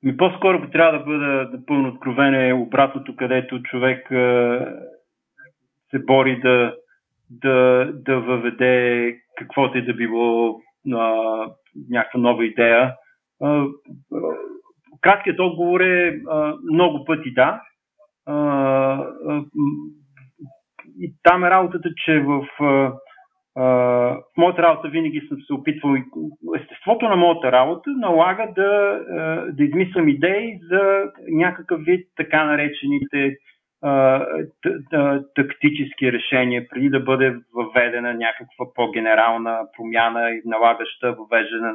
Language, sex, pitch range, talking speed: Bulgarian, male, 125-170 Hz, 110 wpm